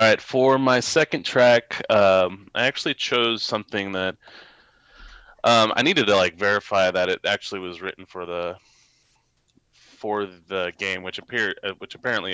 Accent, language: American, English